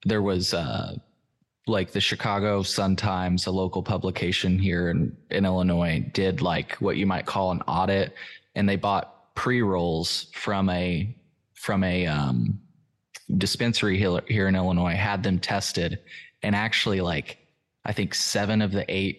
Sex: male